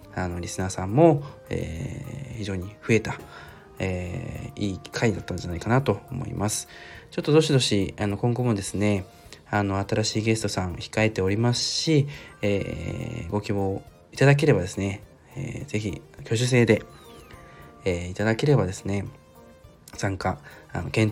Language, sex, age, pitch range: Japanese, male, 20-39, 100-120 Hz